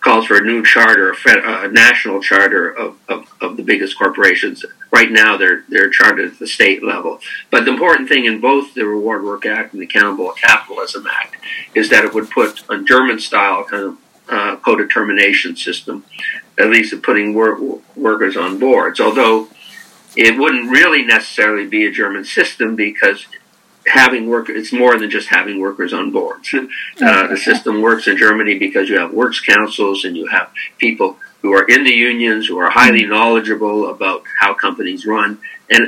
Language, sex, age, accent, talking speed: English, male, 50-69, American, 185 wpm